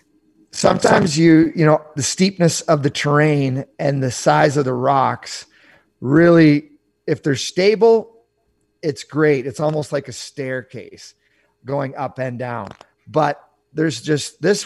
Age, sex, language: 30-49, male, English